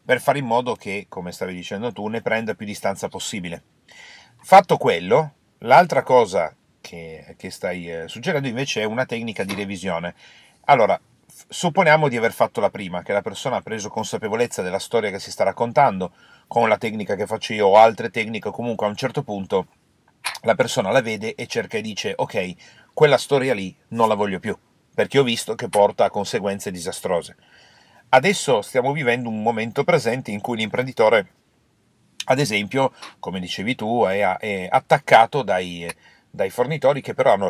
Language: Italian